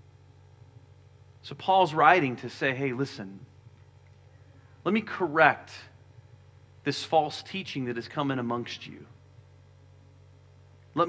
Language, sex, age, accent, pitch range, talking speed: English, male, 40-59, American, 110-145 Hz, 105 wpm